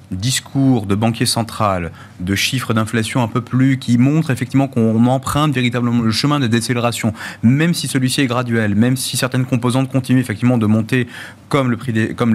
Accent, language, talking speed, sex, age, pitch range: French, French, 185 wpm, male, 30-49, 115-140 Hz